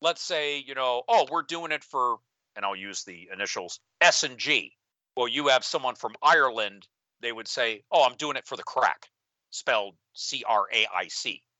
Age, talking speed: 50-69, 180 wpm